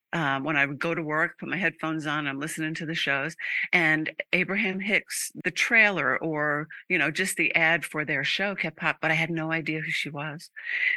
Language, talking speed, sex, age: English, 220 wpm, female, 50-69